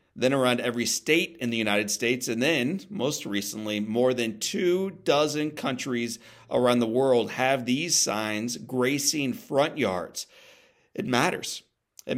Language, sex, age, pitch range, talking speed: English, male, 40-59, 100-125 Hz, 145 wpm